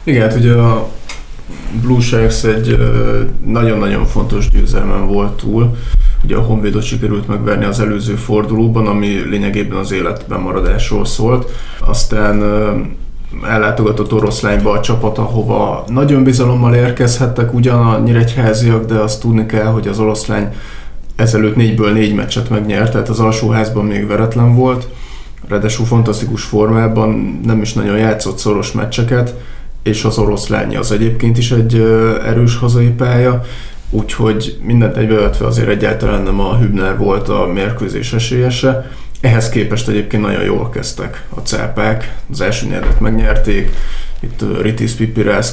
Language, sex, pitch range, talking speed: Hungarian, male, 105-120 Hz, 135 wpm